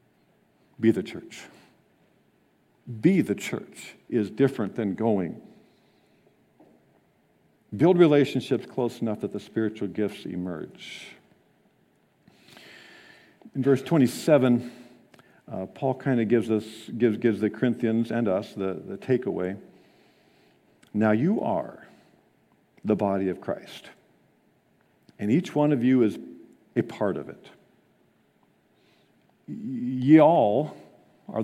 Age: 50-69